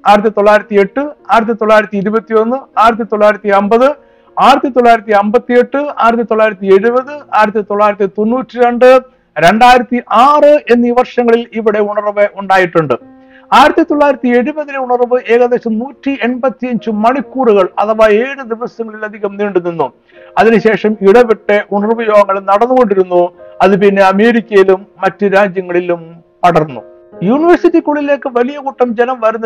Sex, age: male, 60-79